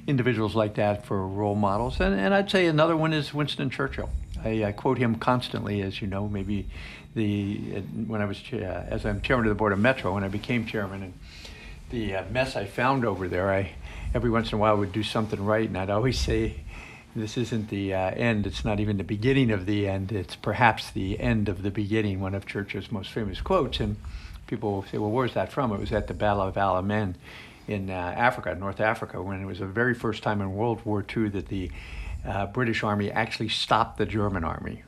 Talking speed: 220 wpm